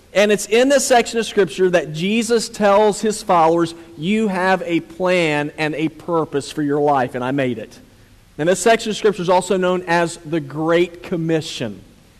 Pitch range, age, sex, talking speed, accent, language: 165-215 Hz, 40-59, male, 185 wpm, American, English